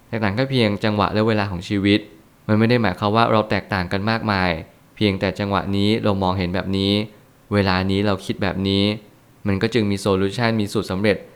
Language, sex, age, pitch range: Thai, male, 20-39, 95-115 Hz